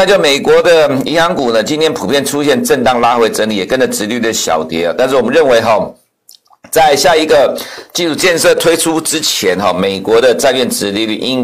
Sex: male